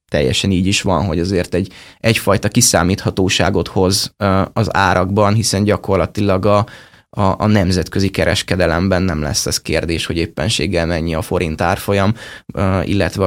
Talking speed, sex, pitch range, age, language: 135 wpm, male, 95-110 Hz, 20-39, Hungarian